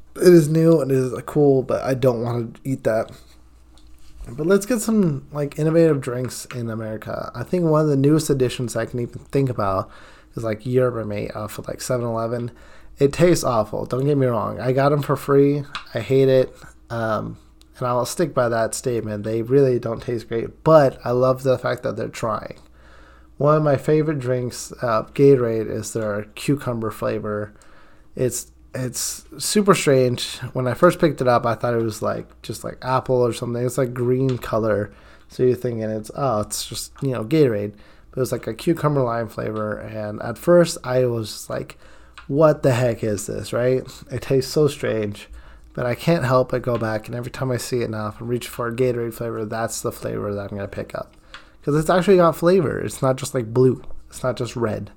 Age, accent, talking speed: 20-39, American, 205 wpm